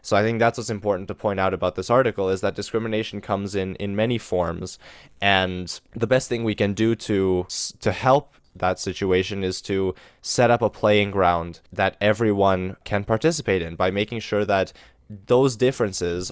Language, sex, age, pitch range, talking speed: English, male, 20-39, 95-115 Hz, 185 wpm